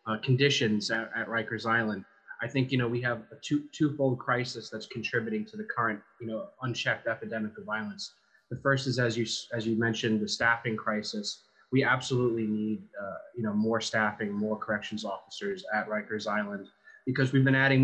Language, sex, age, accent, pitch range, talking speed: English, male, 20-39, American, 110-135 Hz, 190 wpm